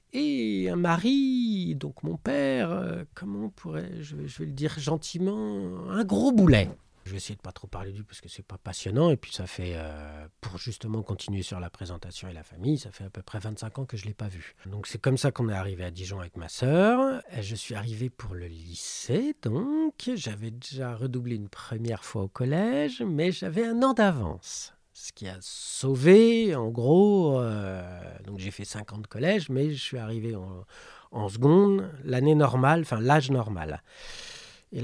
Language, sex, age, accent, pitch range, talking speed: French, male, 50-69, French, 100-155 Hz, 205 wpm